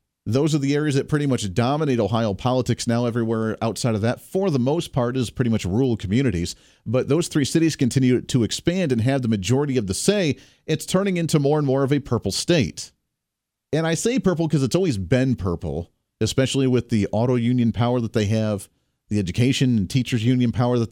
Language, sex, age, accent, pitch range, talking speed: English, male, 40-59, American, 115-155 Hz, 210 wpm